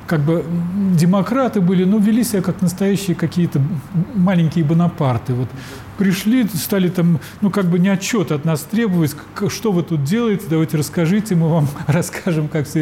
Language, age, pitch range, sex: Russian, 40-59, 155-210 Hz, male